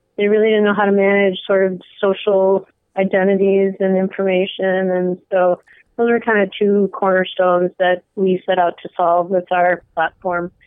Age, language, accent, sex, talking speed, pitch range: 20-39, English, American, female, 170 wpm, 180-210 Hz